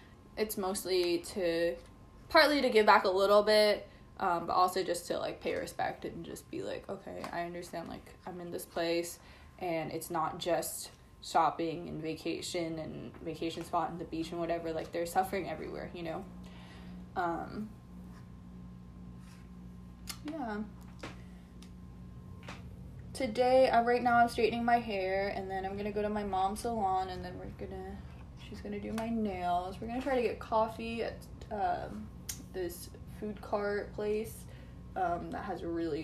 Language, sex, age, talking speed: English, female, 20-39, 160 wpm